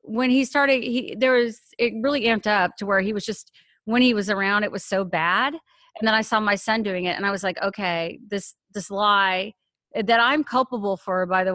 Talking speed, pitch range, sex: 235 wpm, 190-225 Hz, female